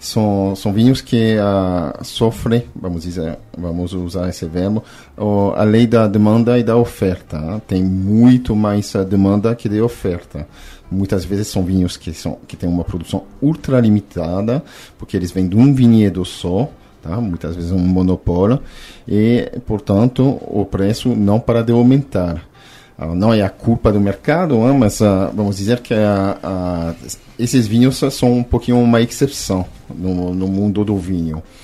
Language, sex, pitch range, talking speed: Portuguese, male, 90-115 Hz, 160 wpm